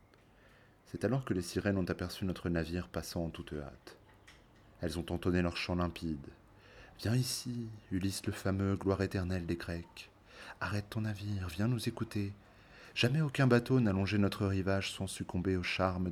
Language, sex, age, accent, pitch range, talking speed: French, male, 30-49, French, 90-110 Hz, 170 wpm